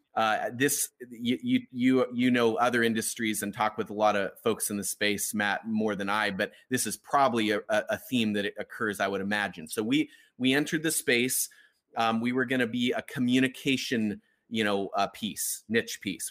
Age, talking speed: 30-49, 200 wpm